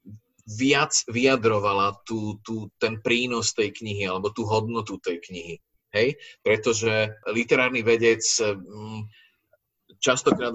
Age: 30-49